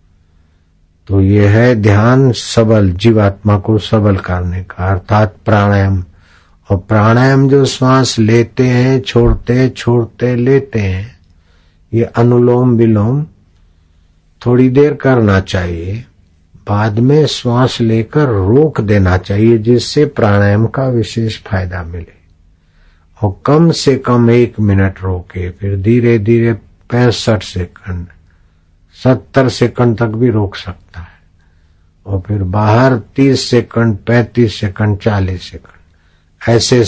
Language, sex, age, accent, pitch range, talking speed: Hindi, male, 60-79, native, 90-120 Hz, 115 wpm